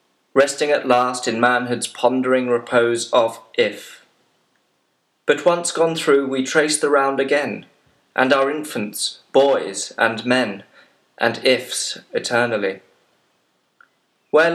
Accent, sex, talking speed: British, male, 115 wpm